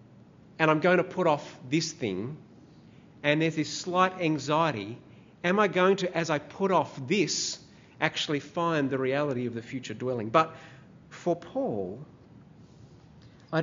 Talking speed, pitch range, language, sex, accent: 150 wpm, 140-180 Hz, English, male, Australian